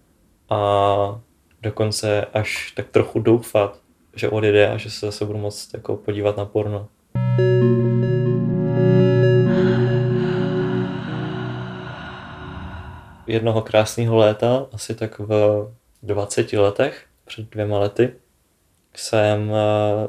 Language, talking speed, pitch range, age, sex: Czech, 90 wpm, 105-115 Hz, 20-39, male